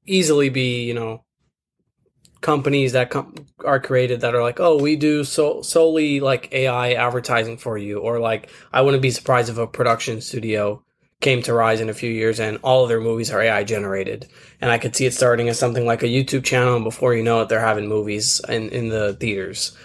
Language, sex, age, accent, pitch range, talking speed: English, male, 20-39, American, 115-135 Hz, 215 wpm